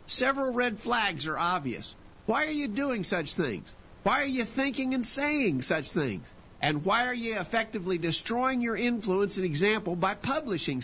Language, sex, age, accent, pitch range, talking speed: English, male, 50-69, American, 170-225 Hz, 170 wpm